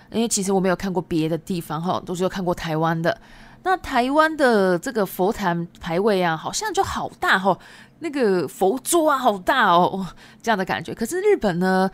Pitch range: 185-250 Hz